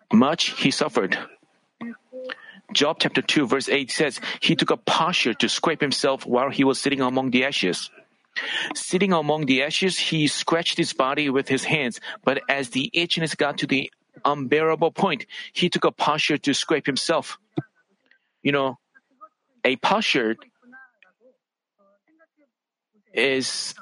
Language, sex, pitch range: Korean, male, 145-240 Hz